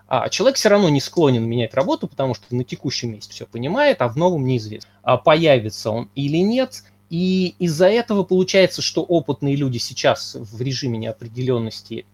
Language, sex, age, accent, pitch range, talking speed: Russian, male, 20-39, native, 115-150 Hz, 170 wpm